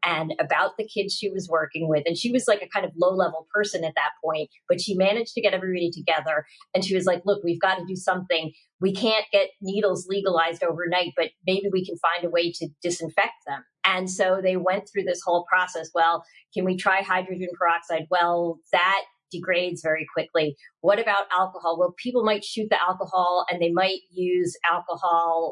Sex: female